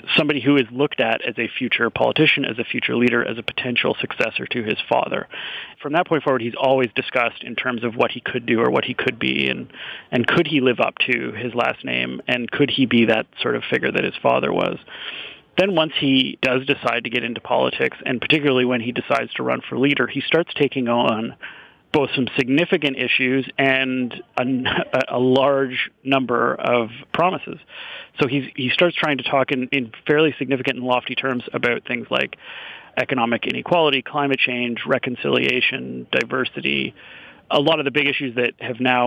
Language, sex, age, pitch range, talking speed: English, male, 40-59, 120-140 Hz, 195 wpm